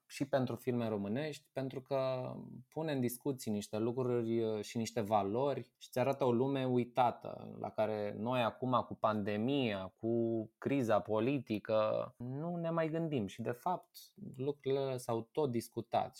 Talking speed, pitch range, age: 150 wpm, 105-135 Hz, 20-39